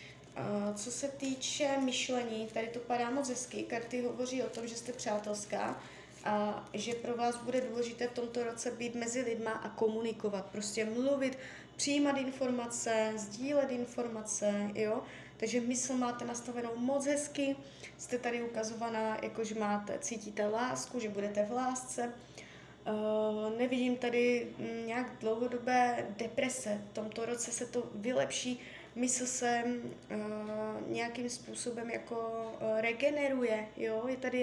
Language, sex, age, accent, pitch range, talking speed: Czech, female, 20-39, native, 220-250 Hz, 130 wpm